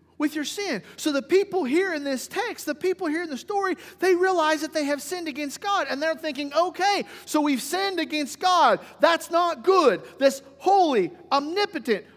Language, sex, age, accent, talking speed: English, male, 40-59, American, 190 wpm